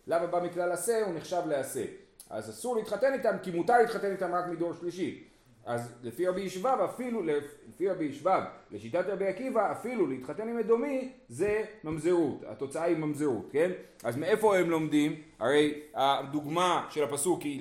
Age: 30-49